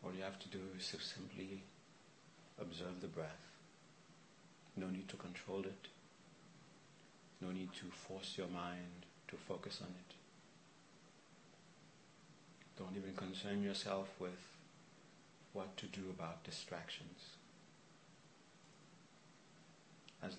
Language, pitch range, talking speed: English, 90-95 Hz, 105 wpm